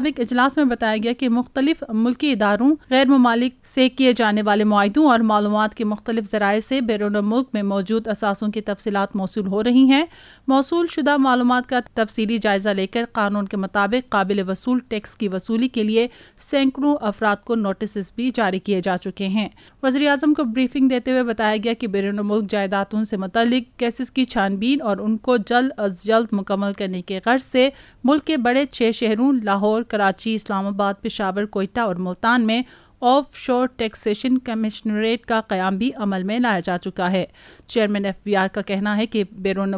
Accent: Indian